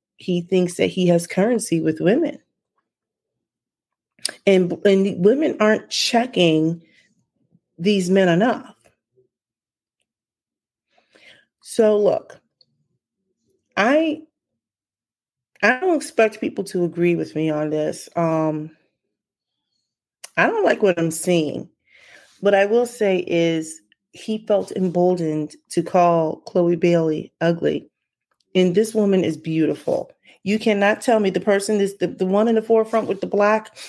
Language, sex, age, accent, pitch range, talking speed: English, female, 30-49, American, 165-210 Hz, 125 wpm